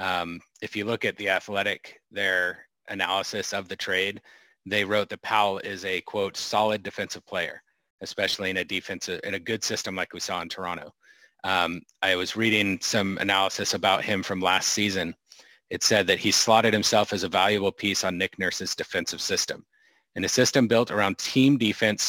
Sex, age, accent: male, 30-49, American